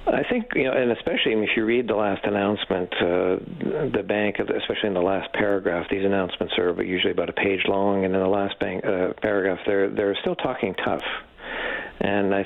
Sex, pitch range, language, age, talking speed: male, 95-110 Hz, English, 50-69, 195 wpm